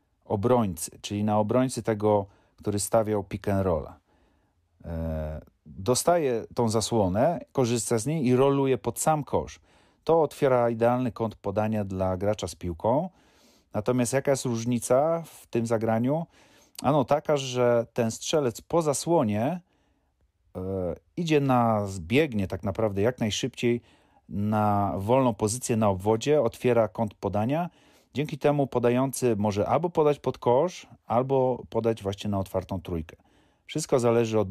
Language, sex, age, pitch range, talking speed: Polish, male, 30-49, 100-125 Hz, 130 wpm